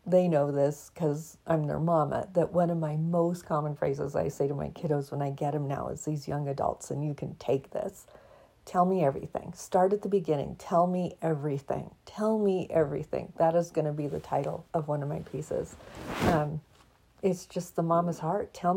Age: 50-69